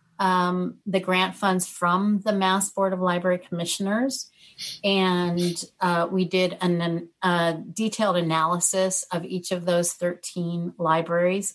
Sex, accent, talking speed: female, American, 125 wpm